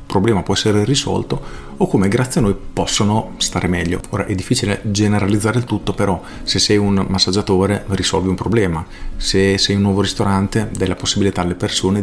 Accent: native